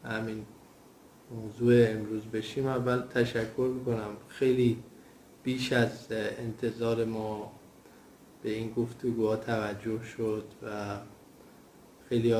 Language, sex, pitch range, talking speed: Persian, male, 110-120 Hz, 90 wpm